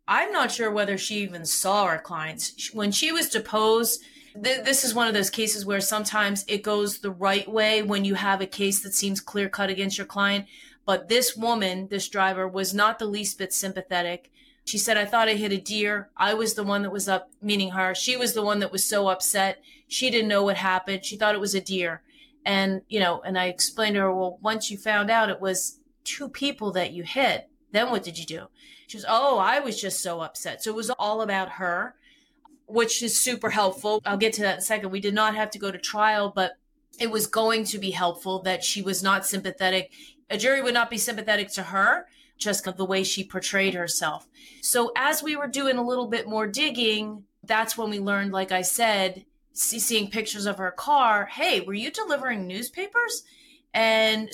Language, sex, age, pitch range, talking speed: English, female, 30-49, 195-235 Hz, 220 wpm